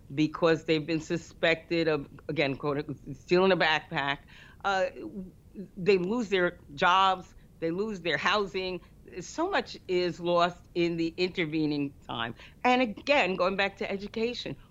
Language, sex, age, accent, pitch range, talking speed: English, female, 50-69, American, 175-225 Hz, 135 wpm